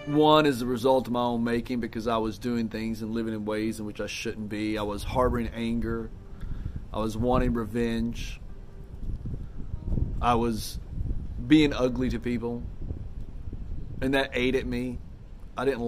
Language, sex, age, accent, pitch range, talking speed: English, male, 30-49, American, 105-135 Hz, 165 wpm